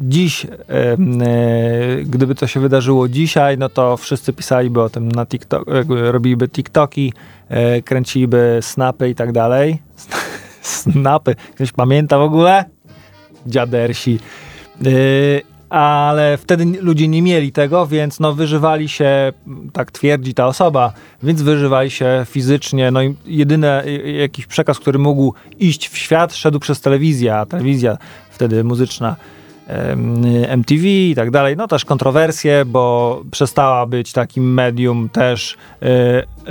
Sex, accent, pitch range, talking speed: male, native, 125-145 Hz, 130 wpm